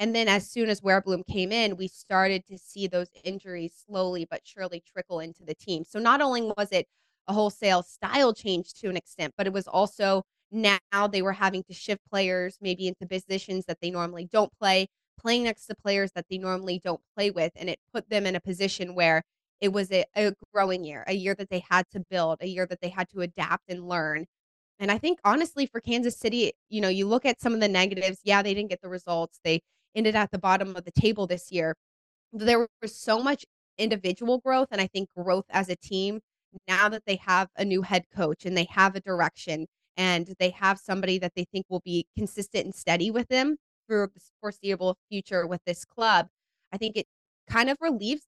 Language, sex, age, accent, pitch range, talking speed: English, female, 20-39, American, 180-210 Hz, 220 wpm